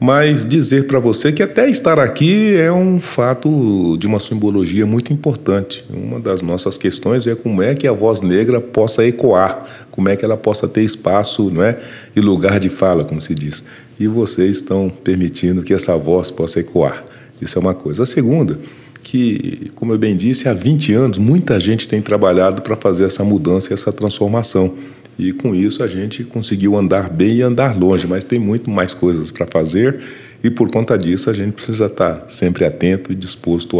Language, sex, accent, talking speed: Portuguese, male, Brazilian, 195 wpm